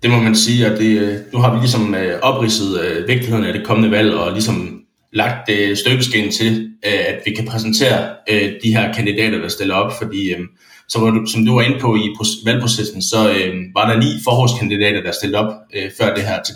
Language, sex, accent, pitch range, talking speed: Danish, male, native, 100-115 Hz, 215 wpm